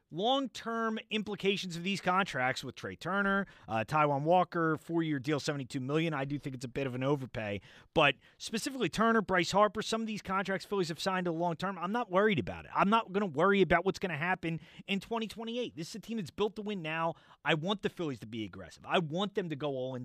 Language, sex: English, male